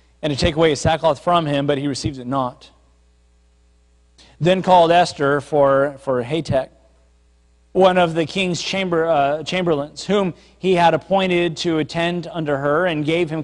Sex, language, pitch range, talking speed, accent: male, English, 140-170 Hz, 165 wpm, American